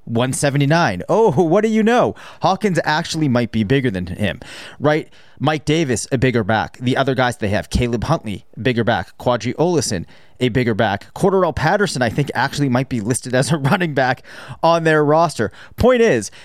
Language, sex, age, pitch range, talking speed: English, male, 30-49, 120-155 Hz, 180 wpm